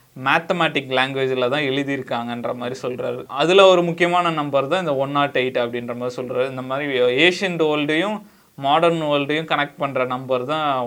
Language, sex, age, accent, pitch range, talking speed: Tamil, male, 20-39, native, 125-160 Hz, 155 wpm